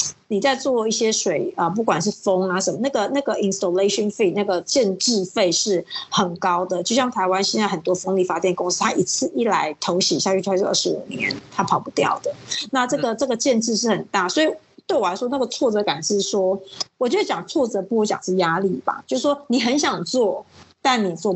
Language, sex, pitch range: Chinese, female, 185-250 Hz